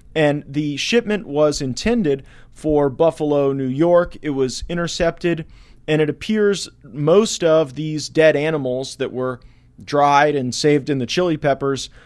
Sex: male